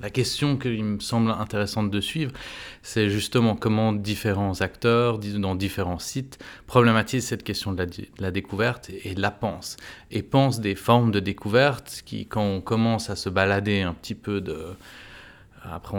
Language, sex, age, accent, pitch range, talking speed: French, male, 30-49, French, 95-115 Hz, 175 wpm